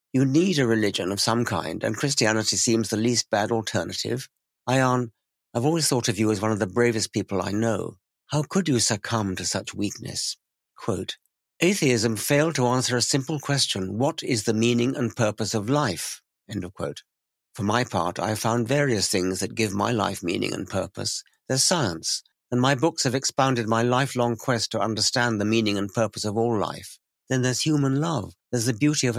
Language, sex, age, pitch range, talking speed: English, male, 60-79, 110-140 Hz, 195 wpm